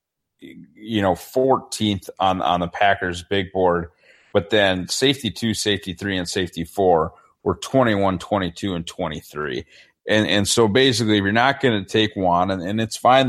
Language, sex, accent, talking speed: English, male, American, 165 wpm